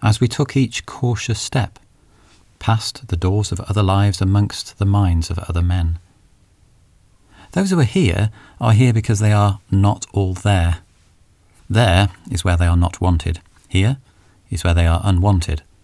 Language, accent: English, British